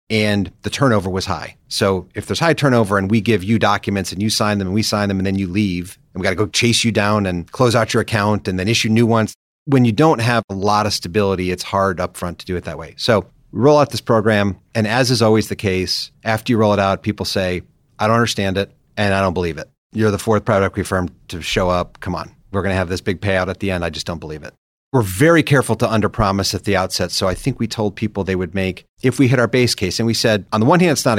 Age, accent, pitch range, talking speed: 40-59, American, 95-115 Hz, 285 wpm